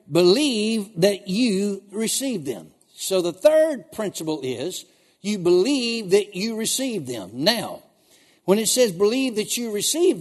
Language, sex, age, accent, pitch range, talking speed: English, male, 60-79, American, 185-250 Hz, 140 wpm